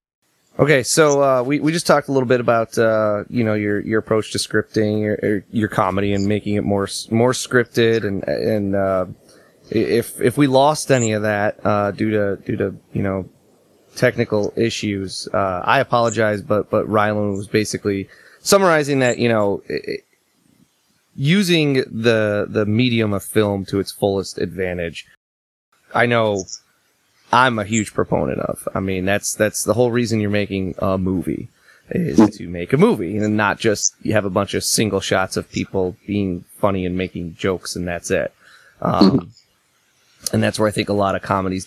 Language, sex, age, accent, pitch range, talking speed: English, male, 20-39, American, 100-120 Hz, 175 wpm